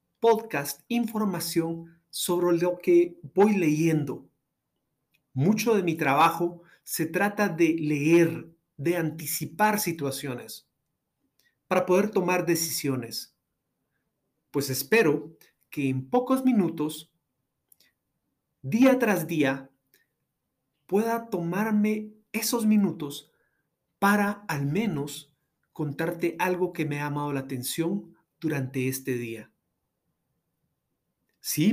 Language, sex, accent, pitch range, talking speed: Spanish, male, Mexican, 145-185 Hz, 95 wpm